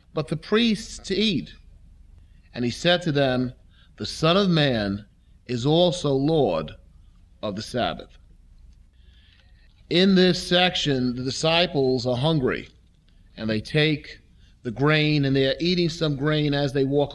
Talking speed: 140 wpm